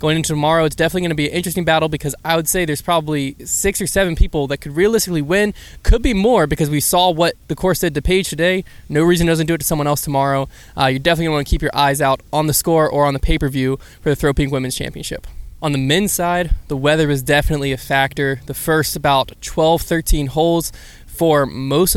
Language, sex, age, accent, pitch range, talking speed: English, male, 20-39, American, 135-165 Hz, 245 wpm